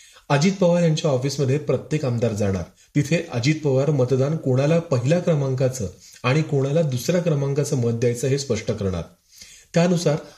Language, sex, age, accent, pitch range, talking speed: Marathi, male, 30-49, native, 115-155 Hz, 140 wpm